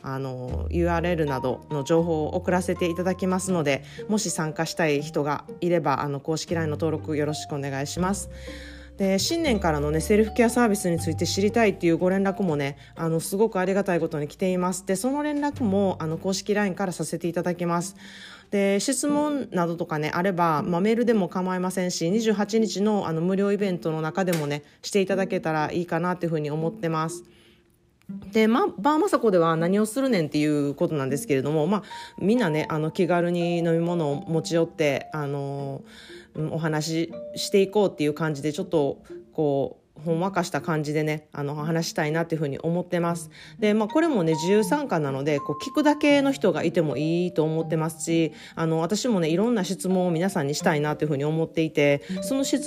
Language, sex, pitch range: Japanese, female, 155-200 Hz